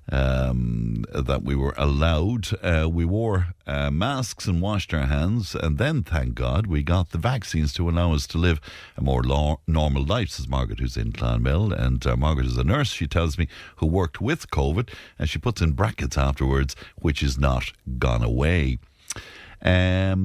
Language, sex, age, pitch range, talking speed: English, male, 60-79, 70-100 Hz, 185 wpm